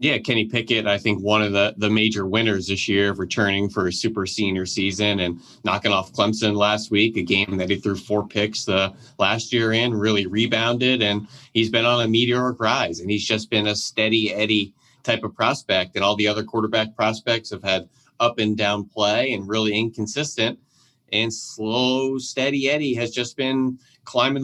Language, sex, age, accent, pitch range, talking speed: English, male, 30-49, American, 100-120 Hz, 190 wpm